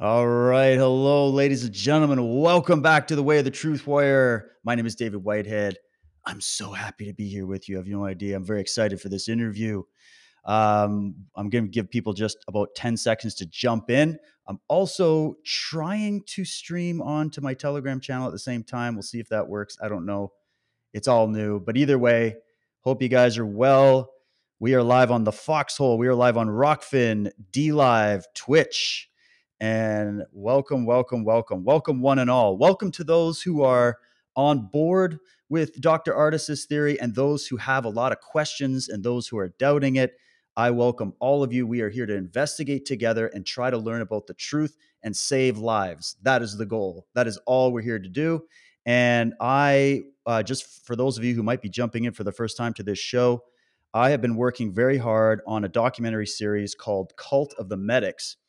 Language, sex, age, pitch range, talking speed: English, male, 30-49, 110-140 Hz, 200 wpm